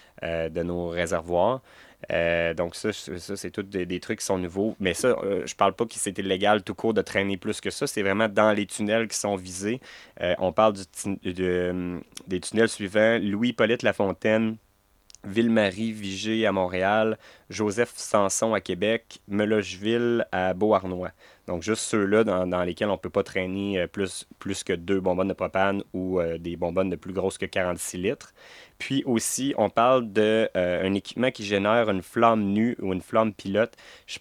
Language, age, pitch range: French, 30-49, 90-110 Hz